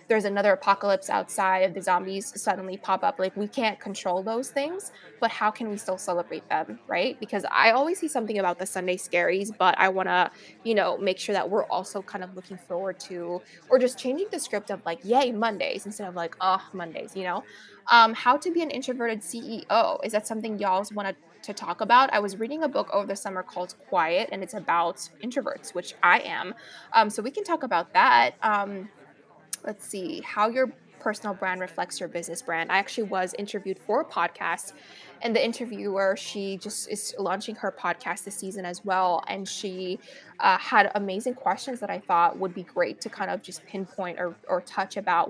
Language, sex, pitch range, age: English, female, 185-225 Hz, 20-39